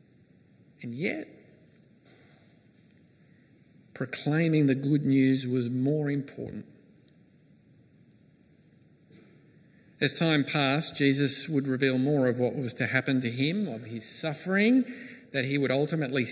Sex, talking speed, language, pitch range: male, 110 wpm, English, 140-195 Hz